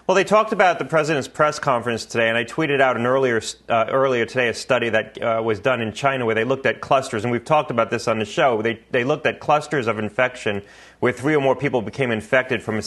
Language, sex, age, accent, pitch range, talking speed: English, male, 30-49, American, 115-135 Hz, 255 wpm